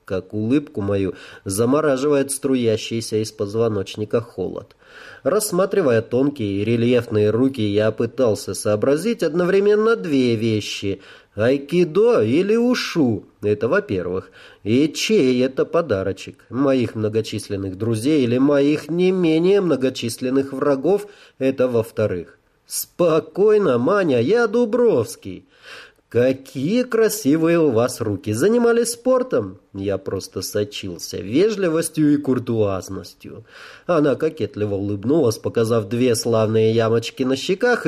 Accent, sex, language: native, male, Russian